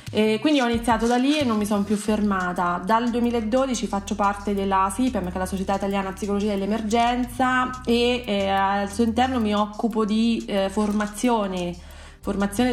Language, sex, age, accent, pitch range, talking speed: Italian, female, 20-39, native, 195-225 Hz, 165 wpm